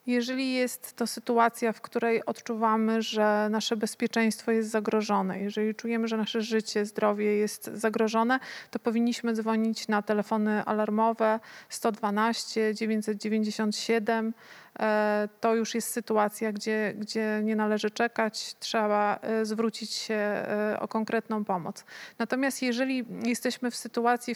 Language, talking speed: Polish, 120 wpm